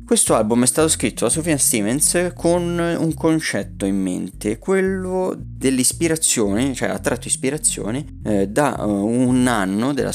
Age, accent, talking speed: 30-49, native, 140 wpm